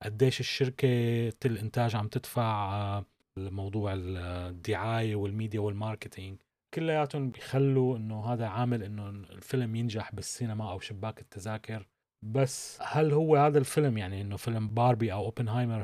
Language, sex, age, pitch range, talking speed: Arabic, male, 30-49, 105-125 Hz, 115 wpm